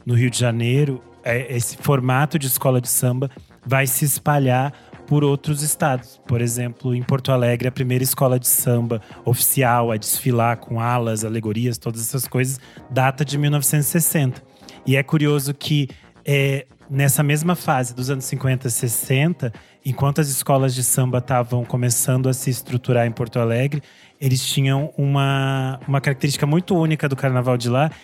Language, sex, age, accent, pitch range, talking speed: Portuguese, male, 20-39, Brazilian, 125-145 Hz, 160 wpm